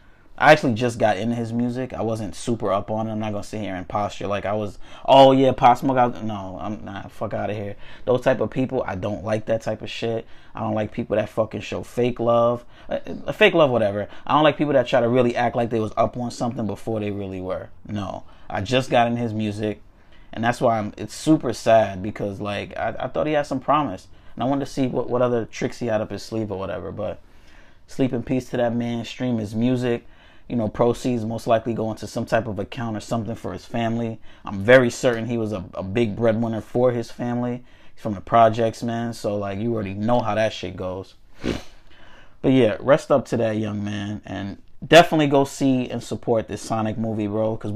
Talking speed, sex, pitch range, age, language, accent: 235 wpm, male, 105-125 Hz, 20-39, English, American